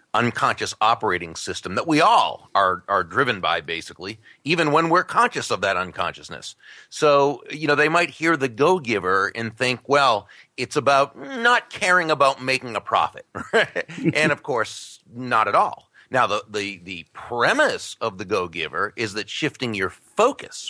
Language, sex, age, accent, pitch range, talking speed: English, male, 30-49, American, 100-140 Hz, 175 wpm